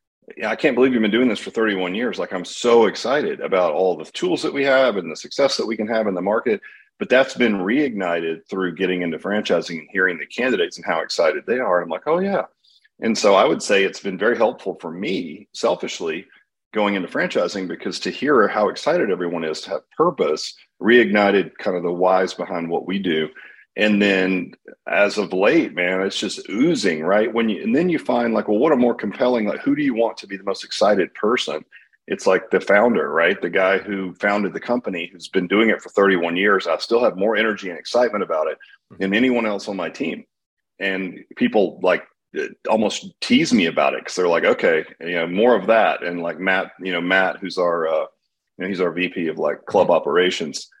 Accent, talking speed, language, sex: American, 220 wpm, English, male